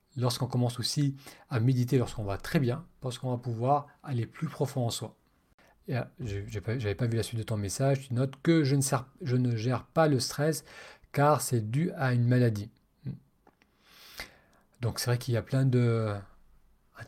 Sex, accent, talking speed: male, French, 195 wpm